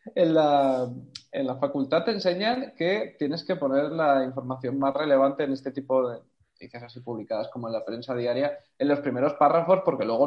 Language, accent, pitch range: Spanish, Spanish, 135-185 Hz